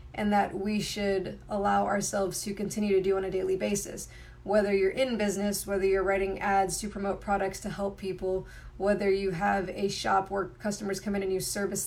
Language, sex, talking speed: English, female, 200 wpm